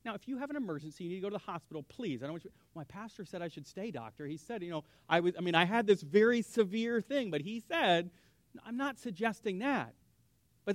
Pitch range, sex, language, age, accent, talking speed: 140-195 Hz, male, English, 40-59, American, 270 wpm